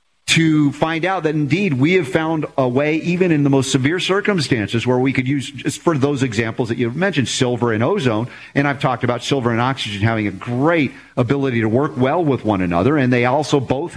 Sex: male